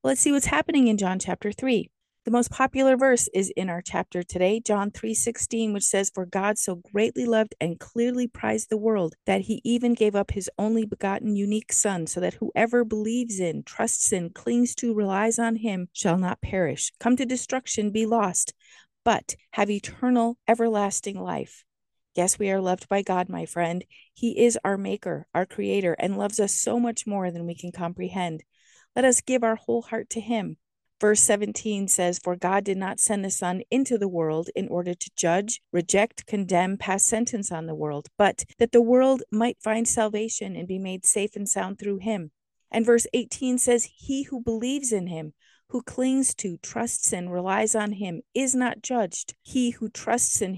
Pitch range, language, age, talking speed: 185-235 Hz, English, 50-69, 190 wpm